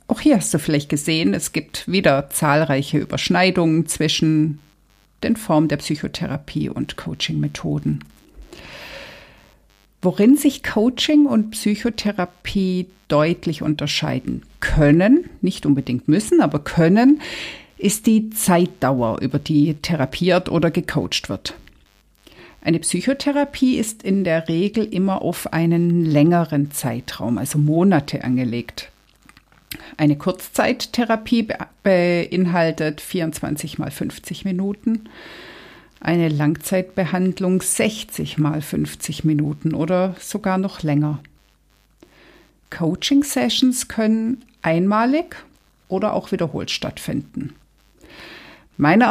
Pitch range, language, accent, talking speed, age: 150-195 Hz, German, German, 95 wpm, 50-69